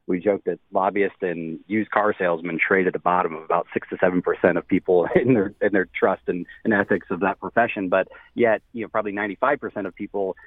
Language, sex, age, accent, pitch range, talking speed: English, male, 30-49, American, 95-110 Hz, 230 wpm